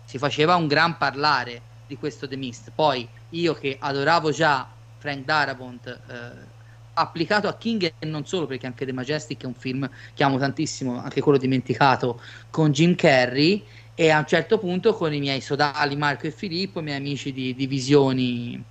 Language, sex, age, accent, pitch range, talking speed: Italian, male, 30-49, native, 125-160 Hz, 180 wpm